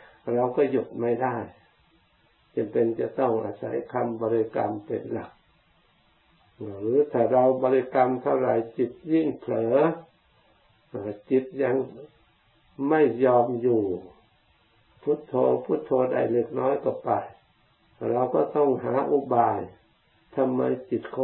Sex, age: male, 60-79